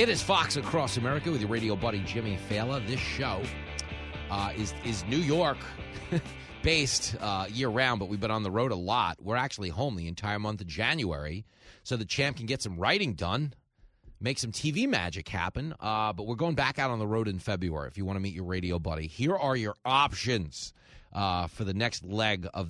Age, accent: 30-49, American